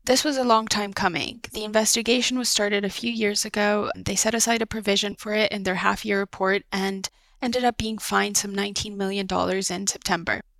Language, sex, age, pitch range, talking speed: English, female, 20-39, 190-220 Hz, 200 wpm